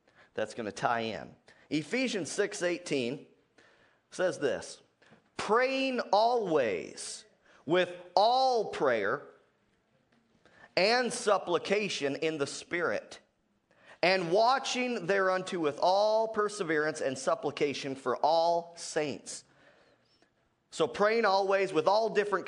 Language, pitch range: English, 155-215 Hz